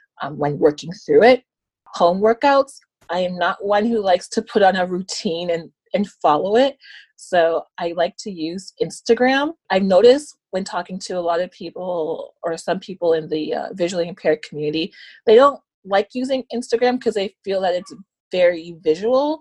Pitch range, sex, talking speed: 170-230 Hz, female, 180 wpm